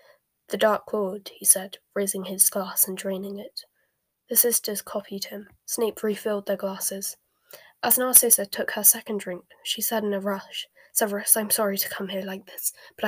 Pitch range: 195-225 Hz